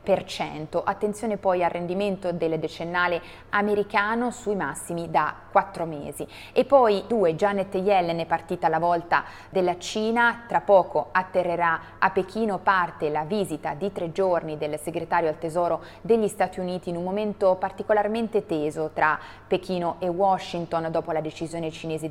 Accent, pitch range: native, 160-200 Hz